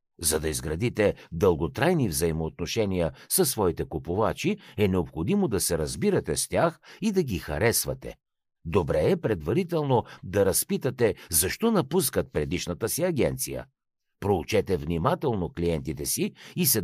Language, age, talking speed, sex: Bulgarian, 60-79, 125 wpm, male